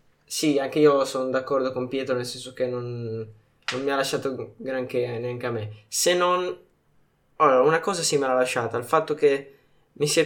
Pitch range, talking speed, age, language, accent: 125-150 Hz, 205 wpm, 20-39, Italian, native